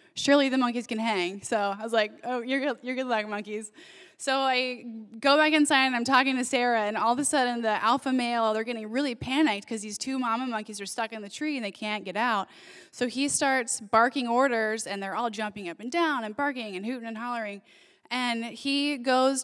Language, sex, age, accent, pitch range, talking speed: English, female, 10-29, American, 220-275 Hz, 225 wpm